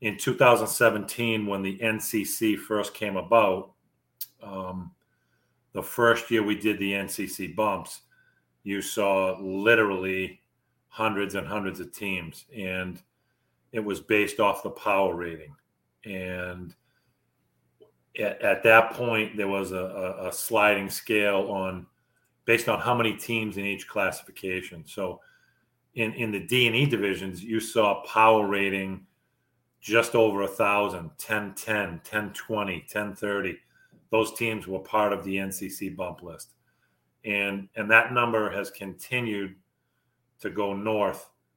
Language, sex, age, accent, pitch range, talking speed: English, male, 40-59, American, 95-110 Hz, 135 wpm